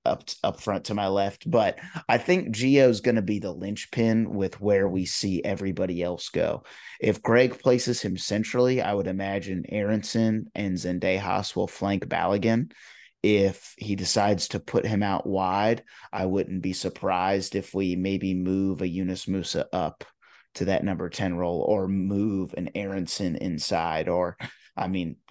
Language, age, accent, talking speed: English, 30-49, American, 165 wpm